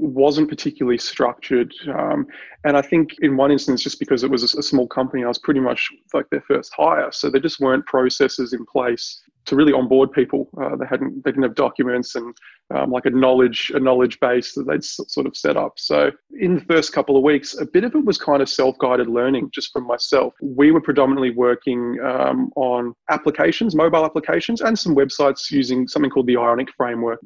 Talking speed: 210 wpm